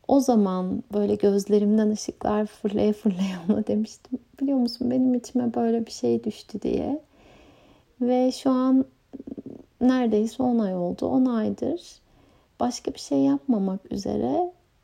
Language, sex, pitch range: Turkish, female, 215-265 Hz